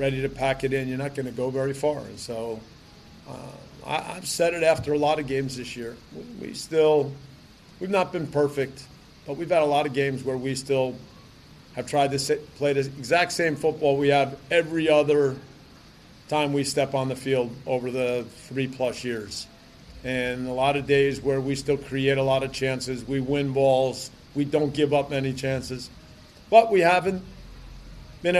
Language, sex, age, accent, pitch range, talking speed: English, male, 40-59, American, 130-145 Hz, 195 wpm